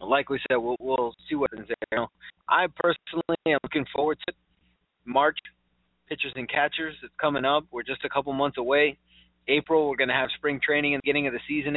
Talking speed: 215 wpm